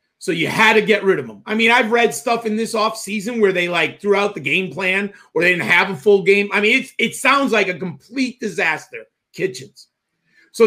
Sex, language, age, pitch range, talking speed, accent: male, English, 40-59, 205-250 Hz, 230 wpm, American